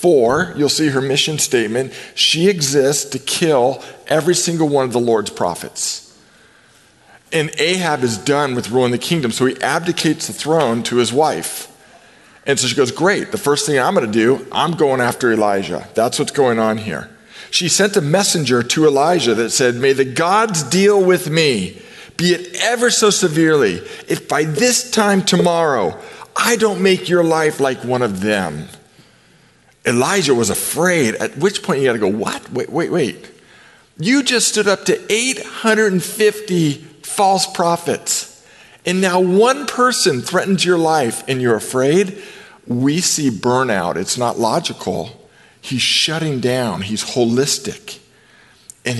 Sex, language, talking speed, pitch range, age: male, English, 160 wpm, 125-185 Hz, 40-59